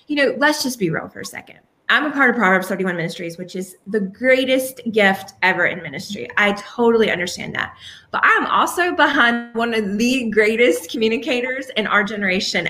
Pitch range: 185-245 Hz